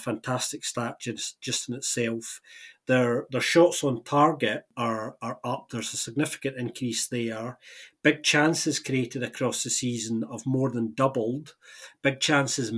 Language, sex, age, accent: English, male, 40-59, British